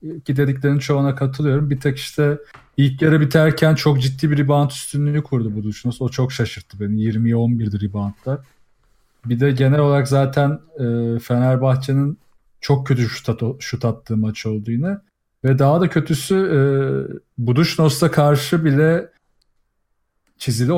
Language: Turkish